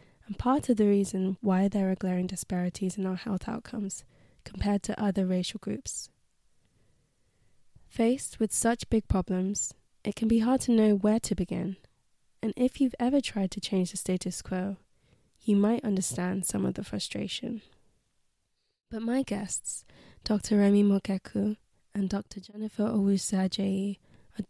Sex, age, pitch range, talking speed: female, 20-39, 185-215 Hz, 150 wpm